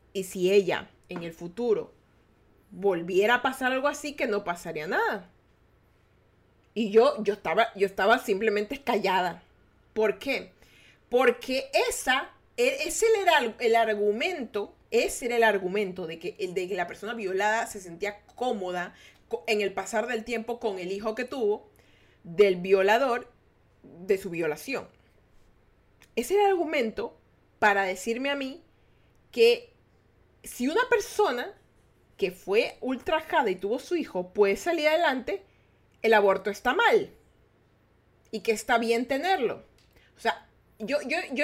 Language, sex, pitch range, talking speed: Spanish, female, 190-275 Hz, 140 wpm